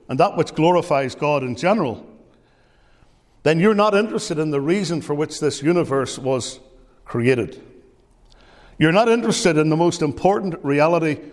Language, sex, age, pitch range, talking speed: English, male, 60-79, 135-180 Hz, 150 wpm